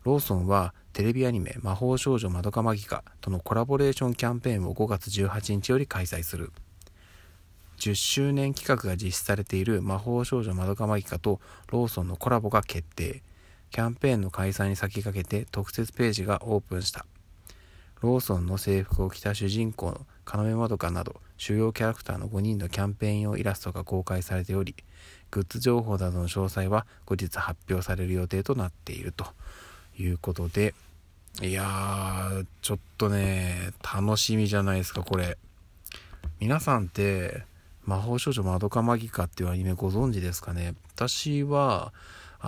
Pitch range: 90-115 Hz